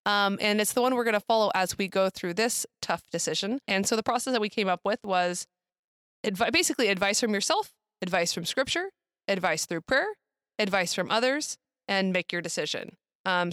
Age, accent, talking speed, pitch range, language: 20-39, American, 200 wpm, 185-225 Hz, English